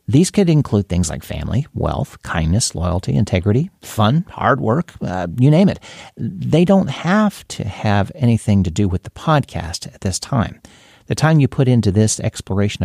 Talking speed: 180 wpm